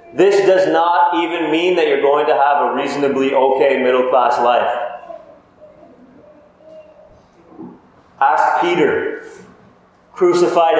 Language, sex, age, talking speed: English, male, 30-49, 100 wpm